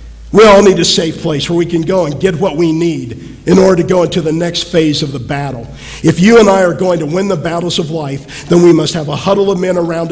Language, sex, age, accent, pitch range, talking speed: English, male, 50-69, American, 135-175 Hz, 280 wpm